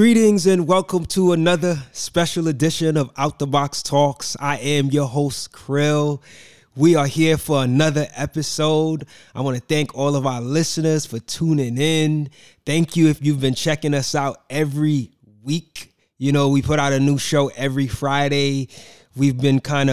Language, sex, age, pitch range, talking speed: English, male, 20-39, 125-150 Hz, 170 wpm